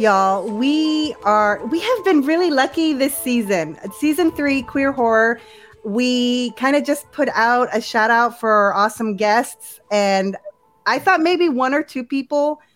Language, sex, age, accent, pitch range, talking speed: English, female, 30-49, American, 215-265 Hz, 165 wpm